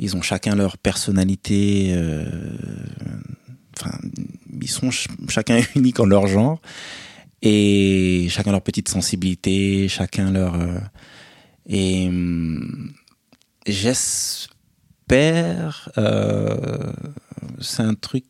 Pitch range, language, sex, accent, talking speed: 90-115 Hz, French, male, French, 85 wpm